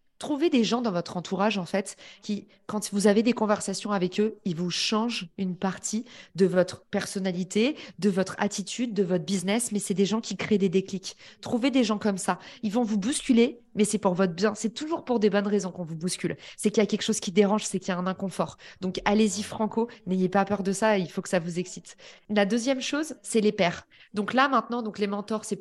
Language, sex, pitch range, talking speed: French, female, 195-245 Hz, 235 wpm